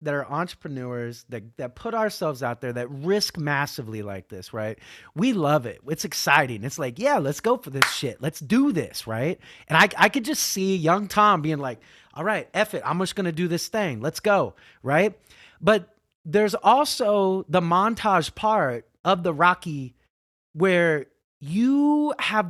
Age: 30-49